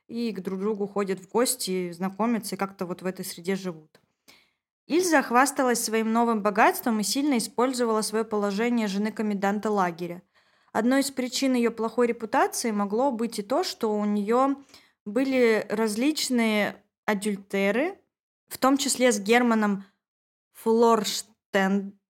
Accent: native